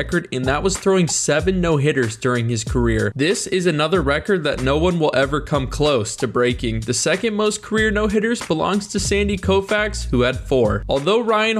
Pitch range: 130-190 Hz